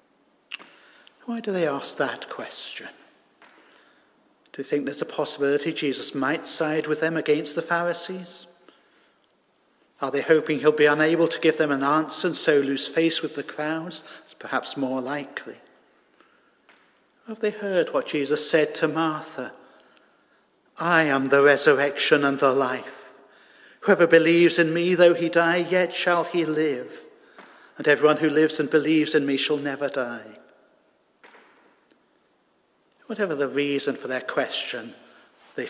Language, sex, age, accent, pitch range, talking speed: English, male, 50-69, British, 145-175 Hz, 145 wpm